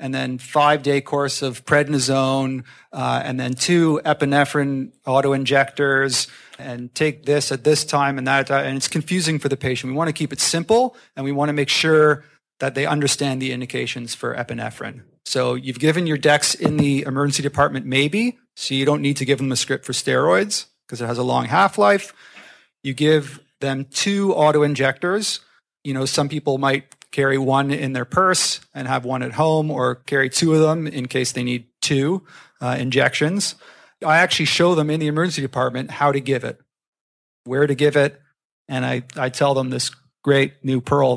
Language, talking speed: English, 195 wpm